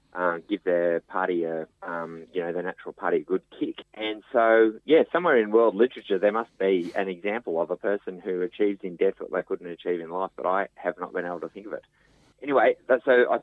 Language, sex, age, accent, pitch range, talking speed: English, male, 30-49, Australian, 90-105 Hz, 235 wpm